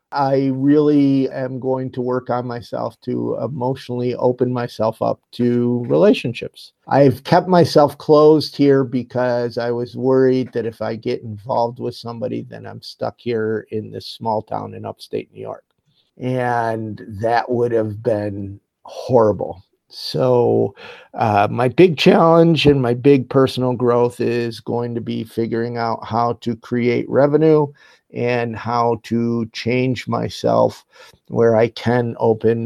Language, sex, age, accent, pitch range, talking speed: English, male, 50-69, American, 115-135 Hz, 145 wpm